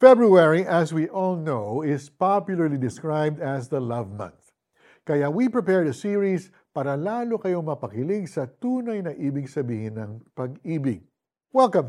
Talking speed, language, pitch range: 145 wpm, Filipino, 140-200 Hz